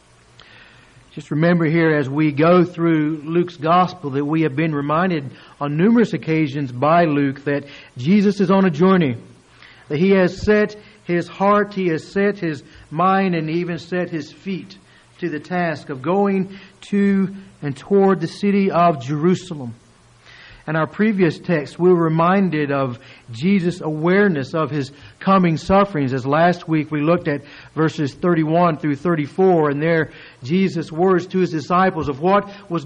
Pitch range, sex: 150-185 Hz, male